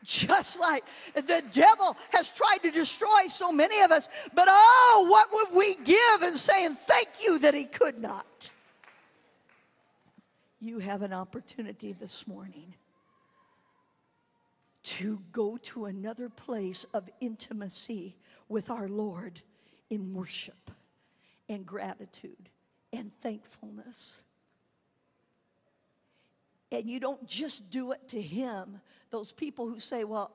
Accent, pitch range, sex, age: American, 200-265 Hz, female, 50-69